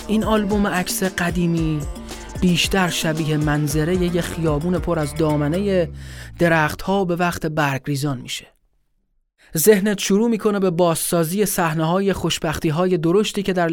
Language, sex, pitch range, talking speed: Persian, male, 160-195 Hz, 125 wpm